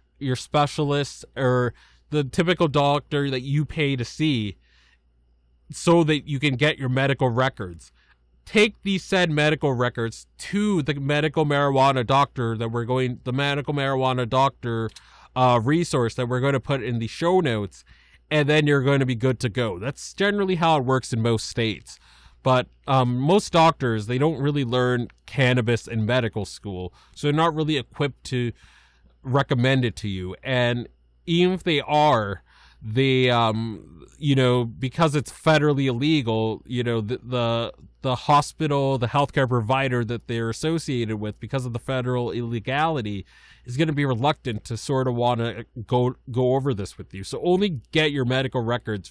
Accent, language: American, English